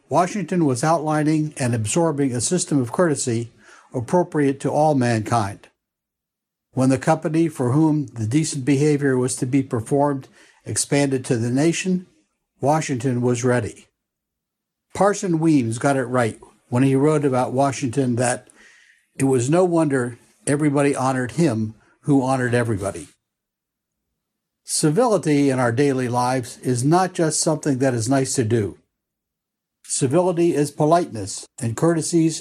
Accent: American